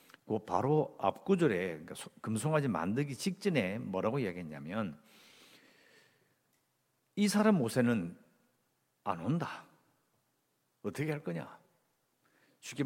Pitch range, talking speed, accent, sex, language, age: 115-185 Hz, 85 wpm, Korean, male, English, 50-69